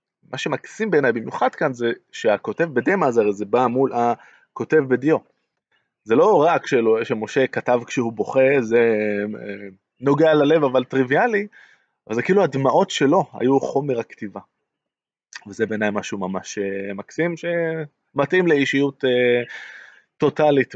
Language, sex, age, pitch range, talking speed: Hebrew, male, 20-39, 110-145 Hz, 120 wpm